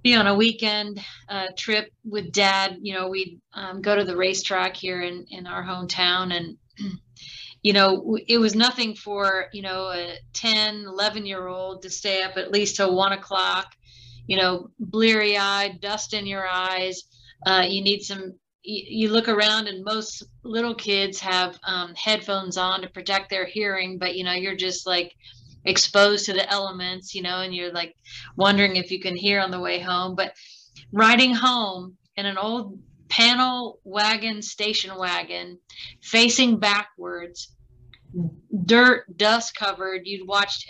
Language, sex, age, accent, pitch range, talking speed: English, female, 30-49, American, 185-215 Hz, 165 wpm